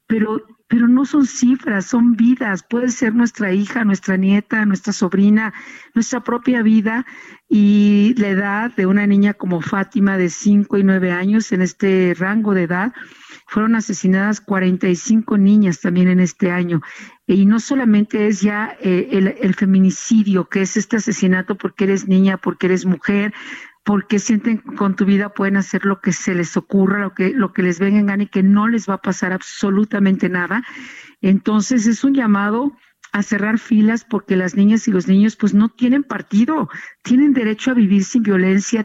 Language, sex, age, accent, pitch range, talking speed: Spanish, female, 50-69, Mexican, 190-225 Hz, 180 wpm